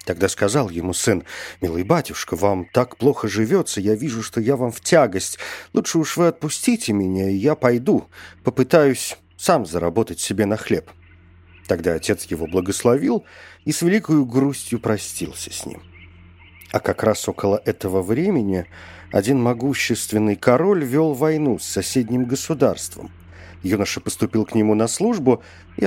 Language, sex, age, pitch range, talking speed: Russian, male, 50-69, 90-130 Hz, 145 wpm